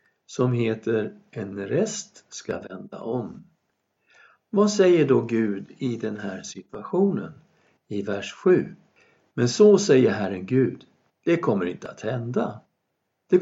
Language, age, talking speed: Swedish, 60-79, 130 wpm